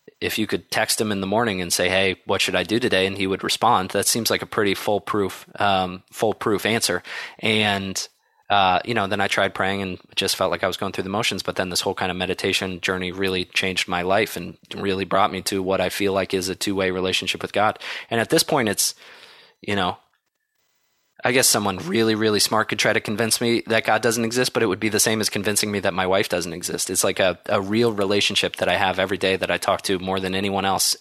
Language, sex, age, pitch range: English, male, 20-39, 95-105 Hz